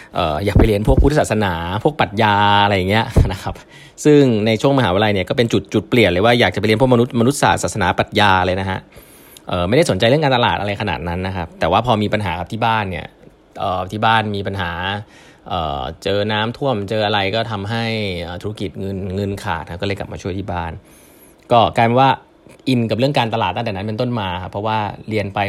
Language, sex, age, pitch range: Thai, male, 20-39, 95-120 Hz